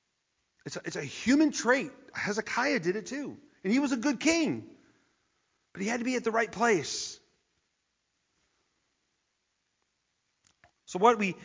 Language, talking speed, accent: English, 145 wpm, American